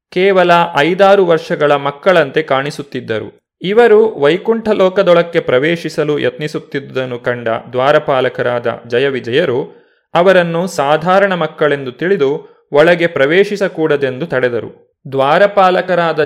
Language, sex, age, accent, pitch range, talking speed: Kannada, male, 30-49, native, 140-190 Hz, 80 wpm